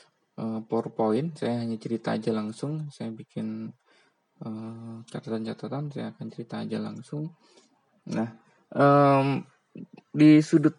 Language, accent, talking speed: Indonesian, native, 105 wpm